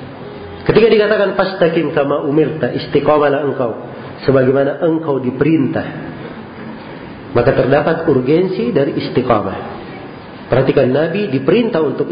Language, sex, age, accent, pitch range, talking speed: Indonesian, male, 40-59, native, 140-195 Hz, 95 wpm